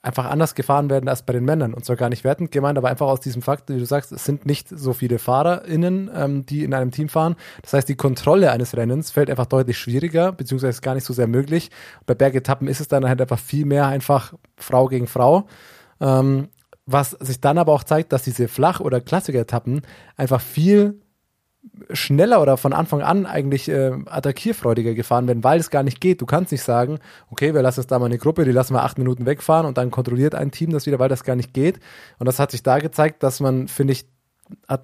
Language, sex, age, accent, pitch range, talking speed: German, male, 20-39, German, 130-155 Hz, 230 wpm